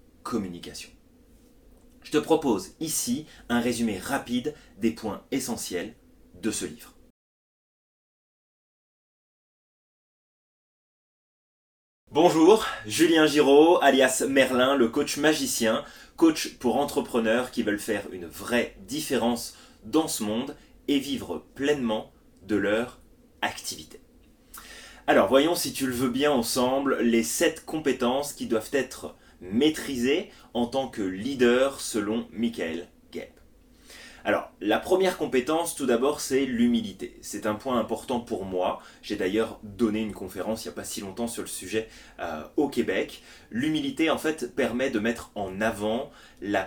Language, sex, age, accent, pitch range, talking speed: French, male, 20-39, French, 115-160 Hz, 130 wpm